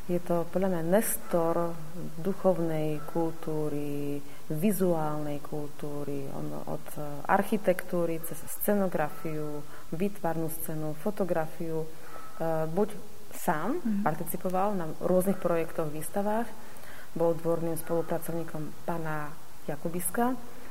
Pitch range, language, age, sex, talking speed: 160-185 Hz, Slovak, 30-49, female, 85 wpm